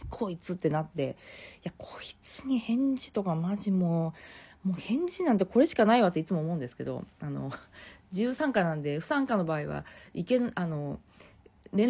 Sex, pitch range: female, 160-240 Hz